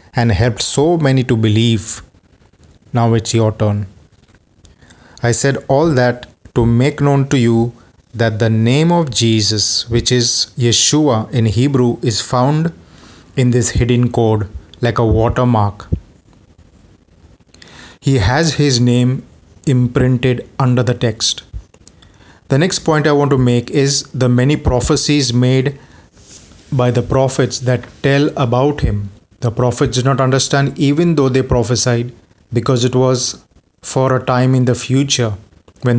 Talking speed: 140 wpm